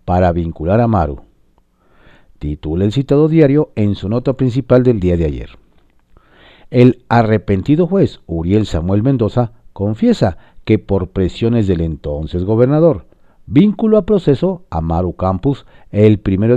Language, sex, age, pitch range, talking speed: Spanish, male, 50-69, 90-140 Hz, 135 wpm